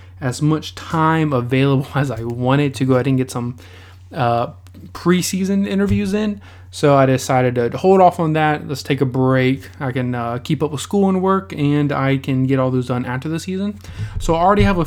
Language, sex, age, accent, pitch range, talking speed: English, male, 20-39, American, 125-155 Hz, 215 wpm